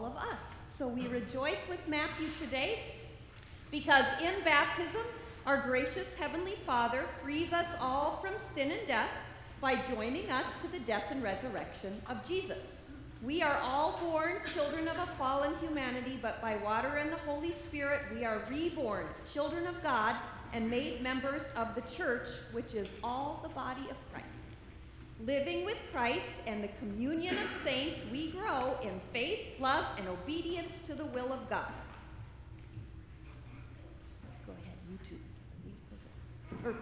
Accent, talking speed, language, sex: American, 150 wpm, English, female